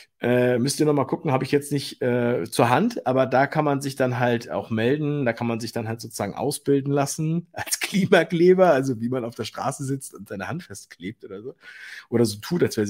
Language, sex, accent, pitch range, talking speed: German, male, German, 120-170 Hz, 235 wpm